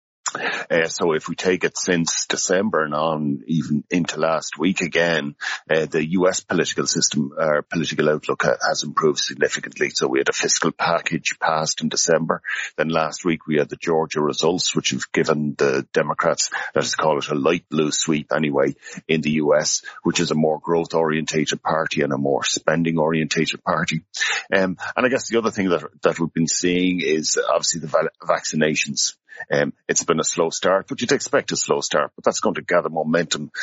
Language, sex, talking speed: English, male, 195 wpm